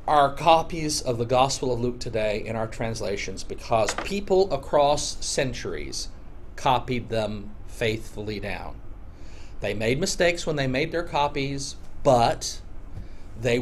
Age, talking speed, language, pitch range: 40-59, 130 wpm, English, 100-140 Hz